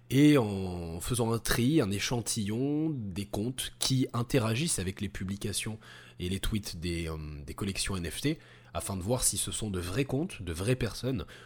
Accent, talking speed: French, 175 wpm